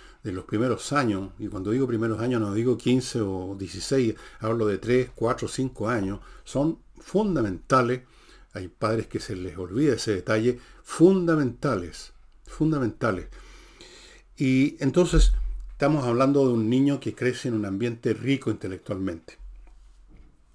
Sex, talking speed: male, 135 wpm